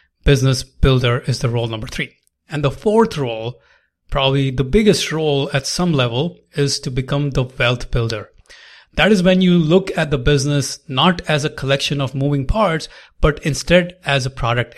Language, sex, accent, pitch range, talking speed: English, male, Indian, 130-175 Hz, 180 wpm